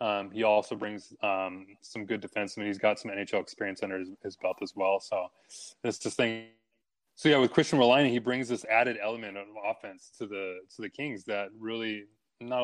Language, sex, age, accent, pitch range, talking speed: English, male, 20-39, American, 100-115 Hz, 205 wpm